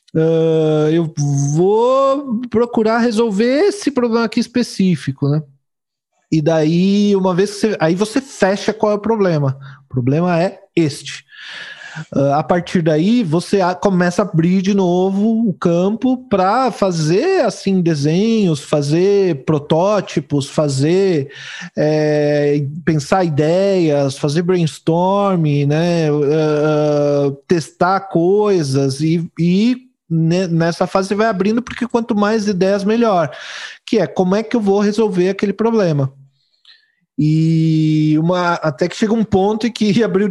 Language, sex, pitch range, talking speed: Portuguese, male, 155-205 Hz, 120 wpm